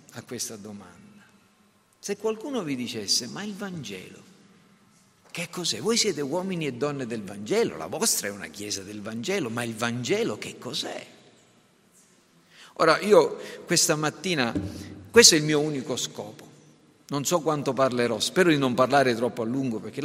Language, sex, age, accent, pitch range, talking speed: Italian, male, 50-69, native, 125-205 Hz, 160 wpm